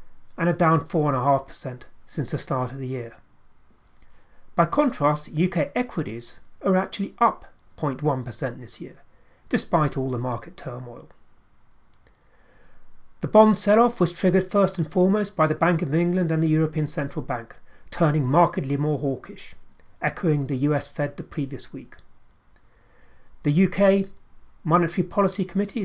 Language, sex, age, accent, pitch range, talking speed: English, male, 40-59, British, 140-185 Hz, 135 wpm